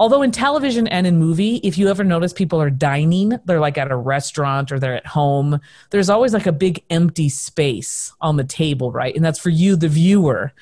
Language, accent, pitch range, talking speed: English, American, 145-195 Hz, 220 wpm